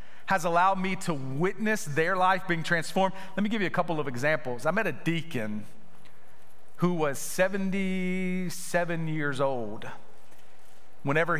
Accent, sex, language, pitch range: American, male, English, 140-185 Hz